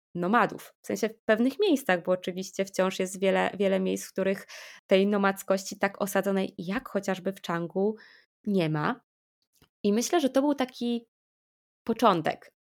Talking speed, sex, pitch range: 150 wpm, female, 195-245 Hz